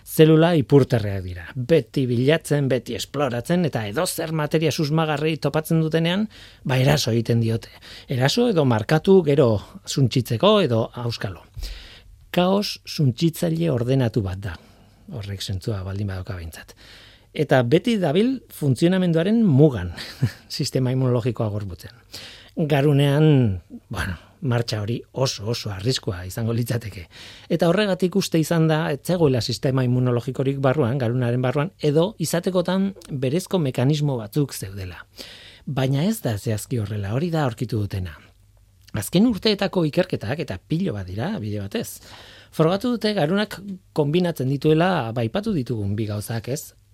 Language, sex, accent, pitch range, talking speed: Spanish, male, Spanish, 110-160 Hz, 120 wpm